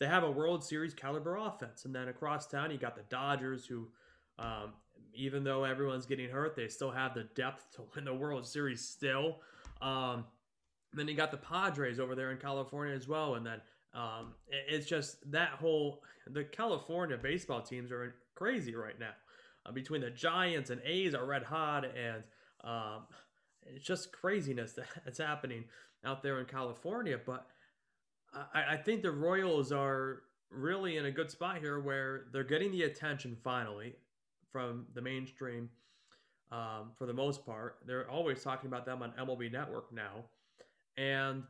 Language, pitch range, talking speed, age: English, 125-150 Hz, 170 wpm, 20-39